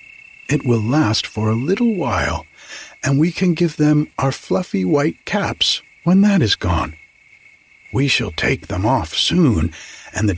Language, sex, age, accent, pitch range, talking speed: English, male, 50-69, American, 95-150 Hz, 160 wpm